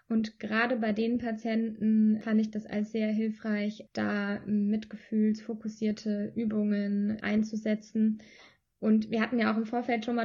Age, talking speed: 20-39, 140 wpm